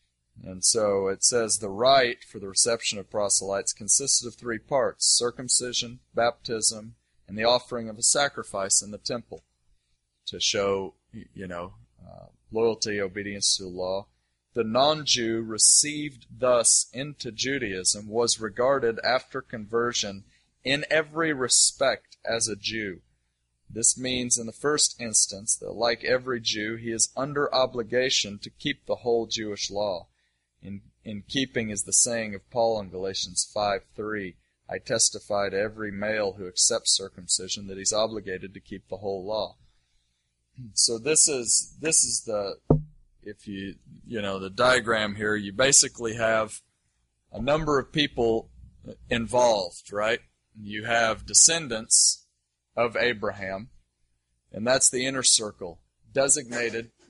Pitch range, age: 95-120 Hz, 30-49